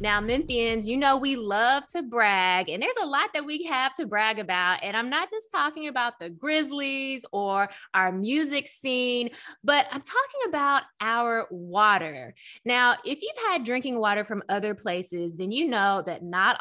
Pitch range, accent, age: 185-265 Hz, American, 20-39